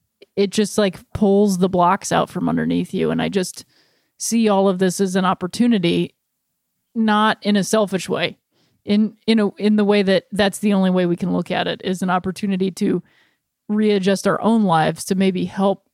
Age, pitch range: 30-49, 195-240 Hz